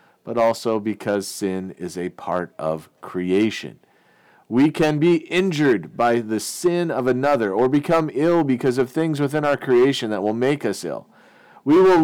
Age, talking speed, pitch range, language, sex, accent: 40-59, 170 wpm, 130-185 Hz, English, male, American